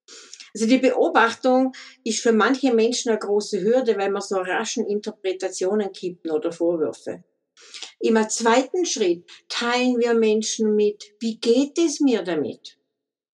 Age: 50-69